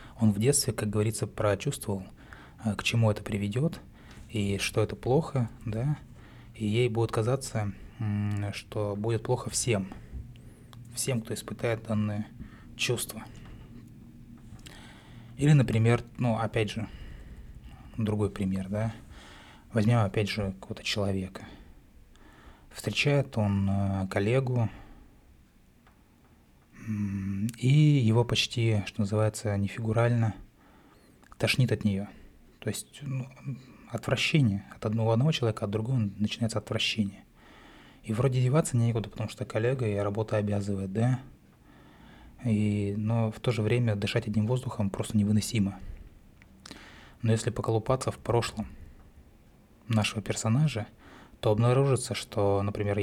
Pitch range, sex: 105-120 Hz, male